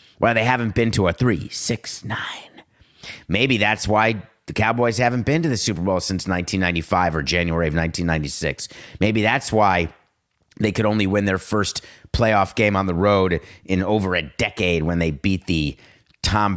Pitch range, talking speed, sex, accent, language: 95-120 Hz, 180 wpm, male, American, English